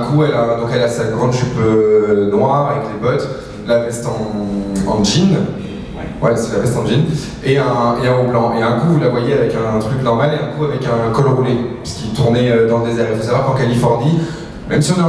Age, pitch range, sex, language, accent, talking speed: 20-39, 115-145 Hz, male, French, French, 240 wpm